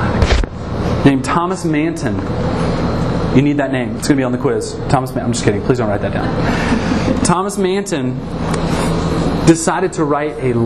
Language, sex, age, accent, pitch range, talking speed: English, male, 30-49, American, 110-170 Hz, 170 wpm